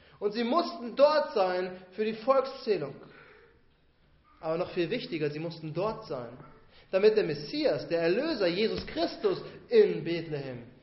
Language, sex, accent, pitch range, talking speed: German, male, German, 160-255 Hz, 140 wpm